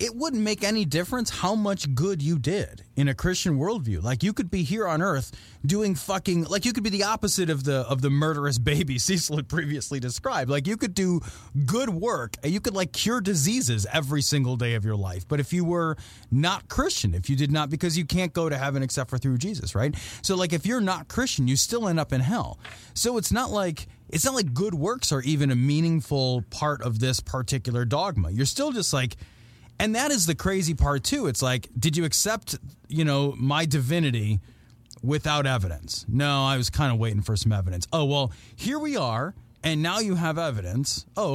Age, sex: 30-49, male